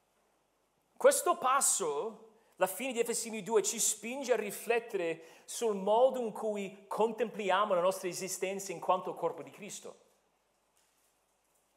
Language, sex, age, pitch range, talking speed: Italian, male, 40-59, 210-280 Hz, 125 wpm